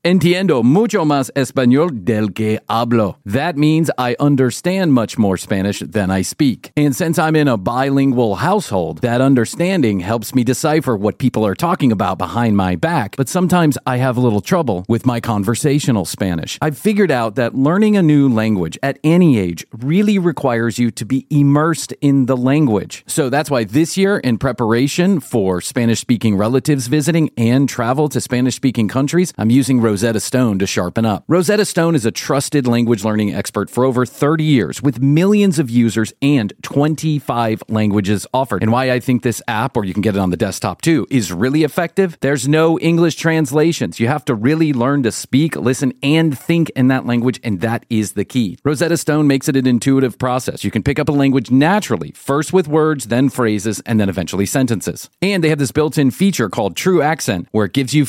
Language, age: English, 40-59